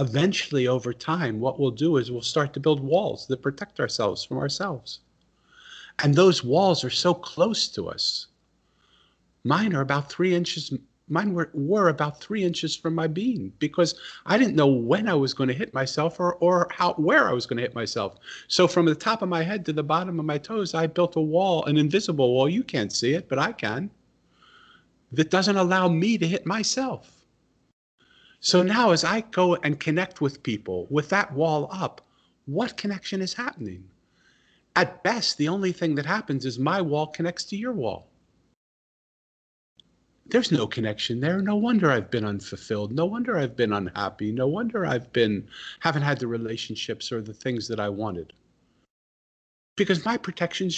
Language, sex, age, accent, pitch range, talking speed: English, male, 40-59, American, 130-185 Hz, 185 wpm